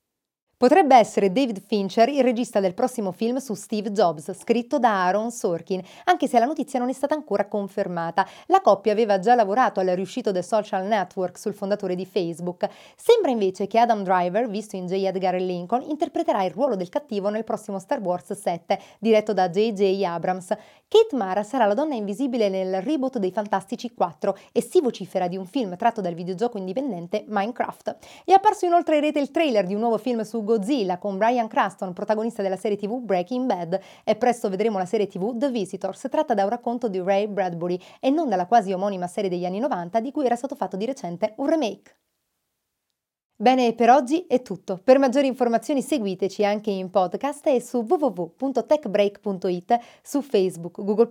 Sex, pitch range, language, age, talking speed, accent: female, 190-250 Hz, Italian, 30-49, 185 wpm, native